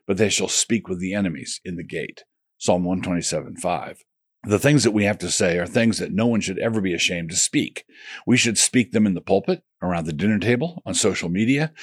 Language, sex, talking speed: English, male, 230 wpm